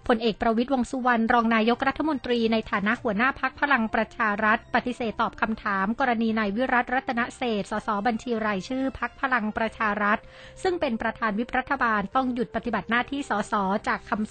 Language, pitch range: Thai, 210-250 Hz